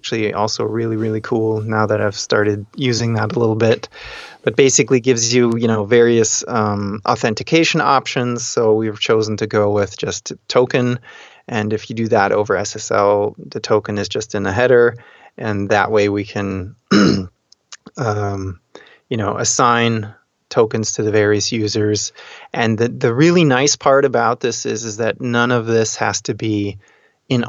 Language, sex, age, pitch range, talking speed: English, male, 20-39, 105-125 Hz, 170 wpm